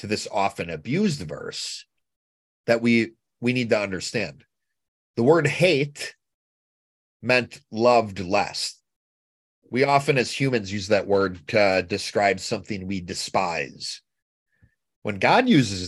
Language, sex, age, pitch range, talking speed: English, male, 30-49, 95-125 Hz, 120 wpm